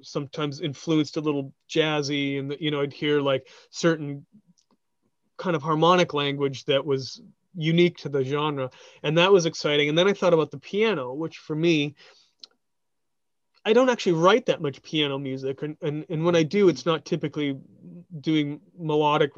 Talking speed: 170 wpm